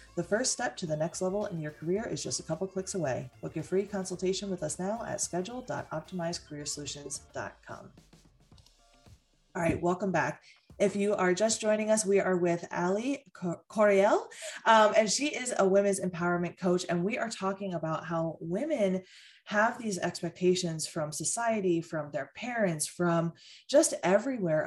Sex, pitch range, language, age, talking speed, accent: female, 160-200 Hz, English, 20-39, 165 wpm, American